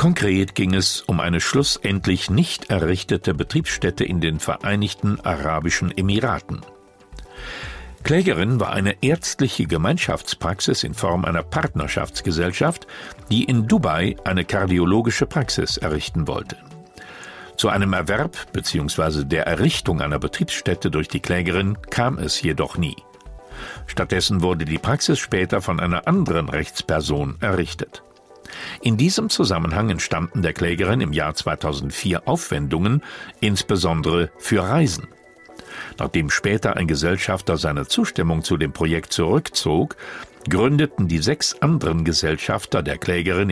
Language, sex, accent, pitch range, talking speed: German, male, German, 80-110 Hz, 120 wpm